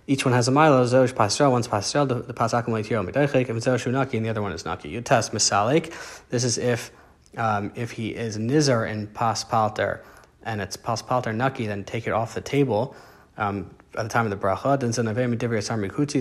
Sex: male